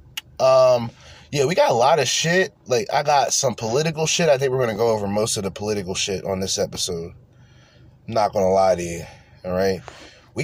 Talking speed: 225 wpm